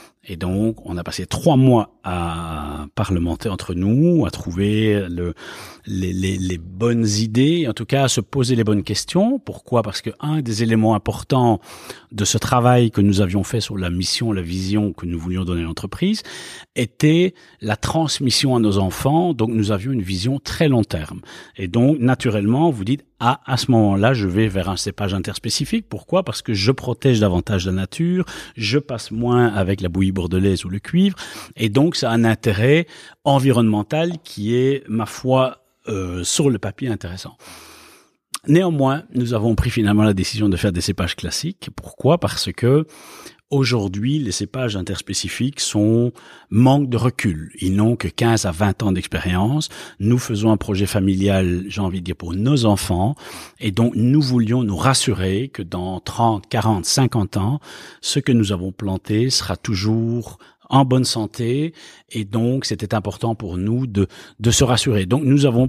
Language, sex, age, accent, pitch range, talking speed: French, male, 30-49, French, 95-130 Hz, 175 wpm